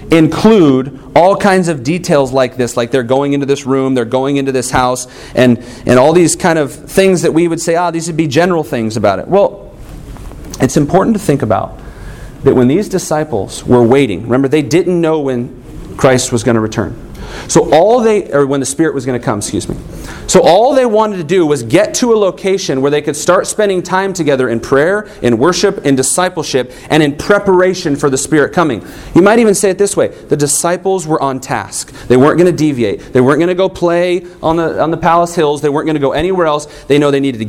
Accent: American